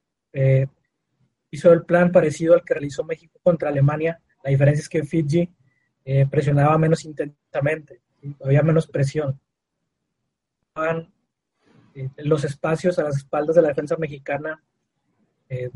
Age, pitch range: 30-49, 140-165 Hz